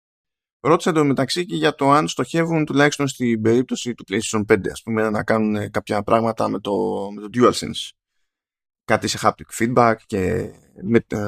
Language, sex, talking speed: Greek, male, 160 wpm